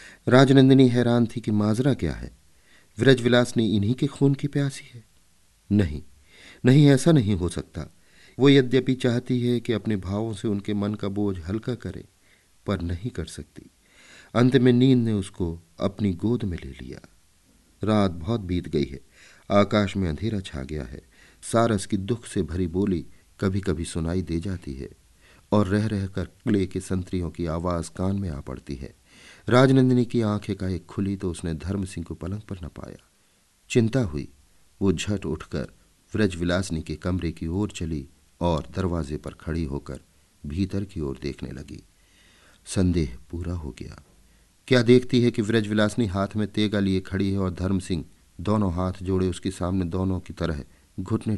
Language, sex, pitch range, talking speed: Hindi, male, 85-110 Hz, 170 wpm